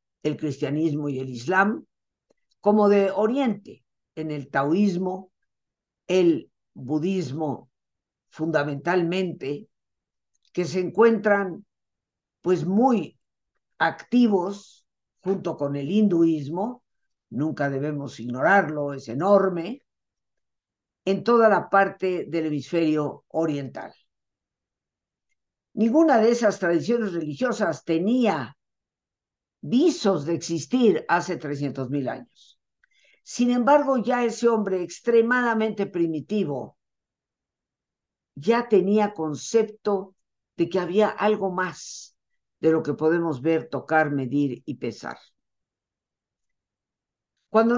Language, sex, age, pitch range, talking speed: Spanish, female, 50-69, 150-210 Hz, 90 wpm